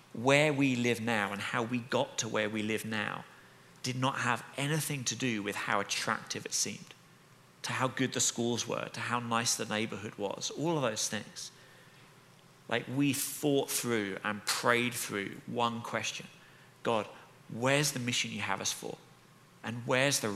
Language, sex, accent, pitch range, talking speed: English, male, British, 110-140 Hz, 175 wpm